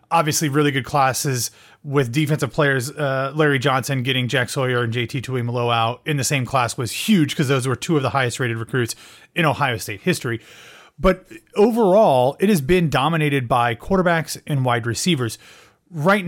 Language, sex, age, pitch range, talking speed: English, male, 30-49, 125-160 Hz, 175 wpm